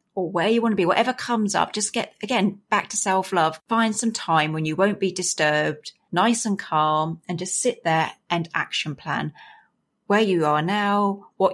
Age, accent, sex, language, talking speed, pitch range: 40-59, British, female, English, 205 wpm, 170-215 Hz